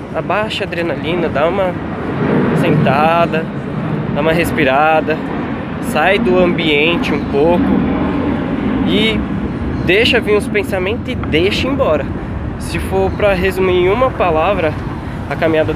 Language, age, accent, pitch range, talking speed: Portuguese, 20-39, Brazilian, 115-160 Hz, 120 wpm